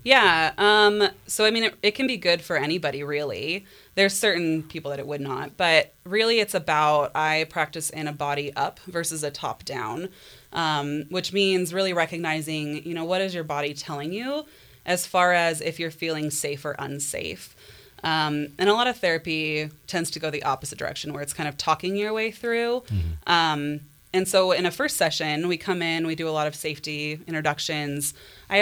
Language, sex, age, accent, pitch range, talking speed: English, female, 20-39, American, 150-180 Hz, 200 wpm